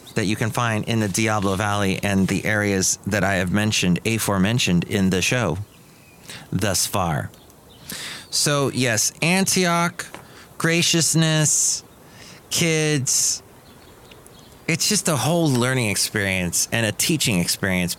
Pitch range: 105-145 Hz